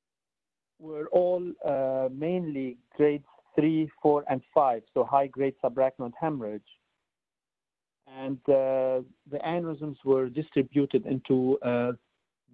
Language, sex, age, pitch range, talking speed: English, male, 50-69, 125-145 Hz, 100 wpm